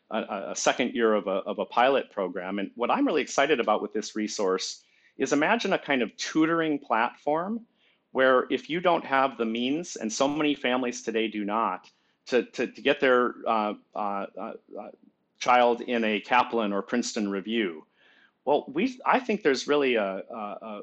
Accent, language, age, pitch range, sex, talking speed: American, English, 40-59, 105-125 Hz, male, 180 wpm